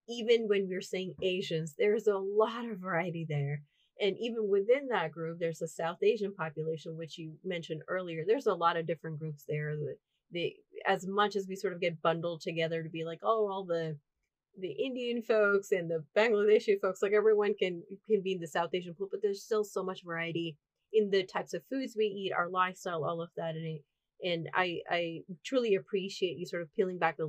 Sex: female